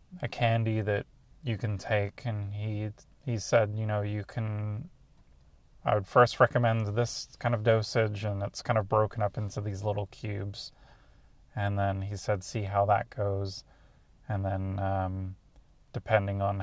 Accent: American